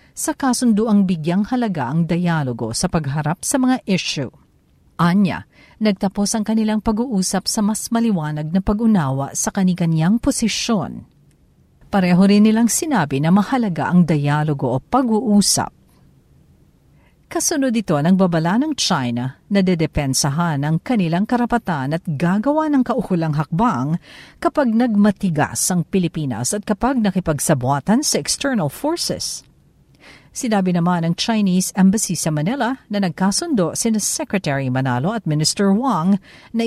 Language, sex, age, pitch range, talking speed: Filipino, female, 50-69, 160-230 Hz, 125 wpm